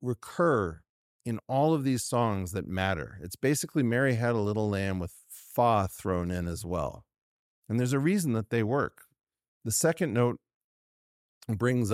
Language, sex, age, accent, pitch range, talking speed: English, male, 40-59, American, 95-120 Hz, 160 wpm